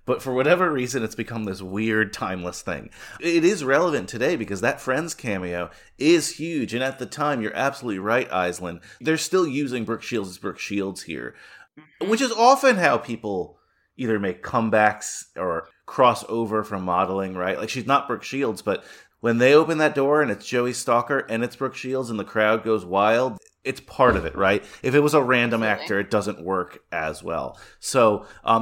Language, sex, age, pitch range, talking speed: English, male, 30-49, 105-140 Hz, 195 wpm